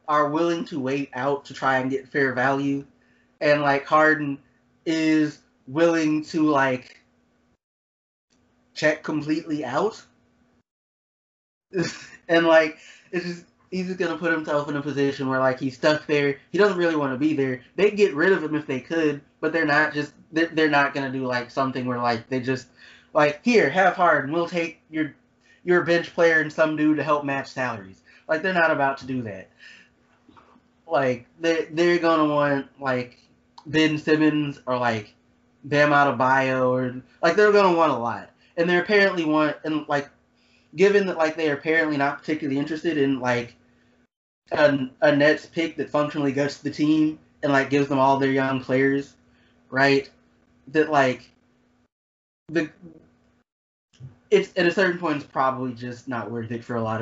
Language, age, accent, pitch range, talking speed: English, 20-39, American, 130-160 Hz, 175 wpm